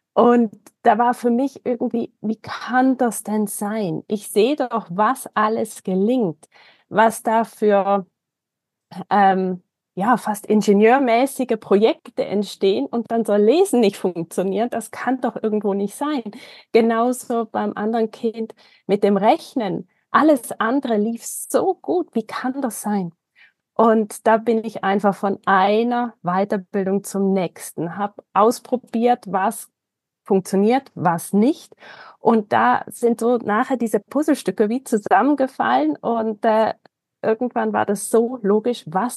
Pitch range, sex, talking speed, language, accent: 195-235 Hz, female, 135 wpm, German, German